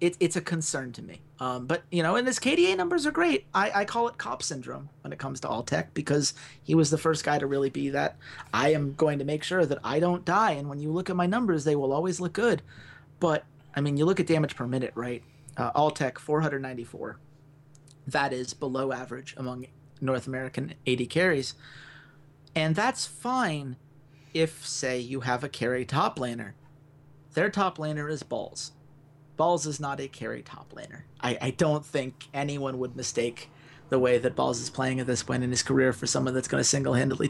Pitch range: 130-155 Hz